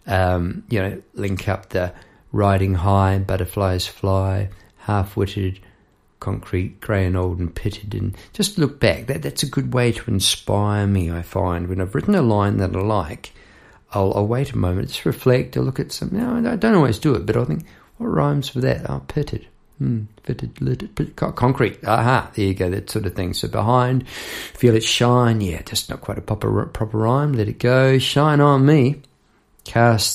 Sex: male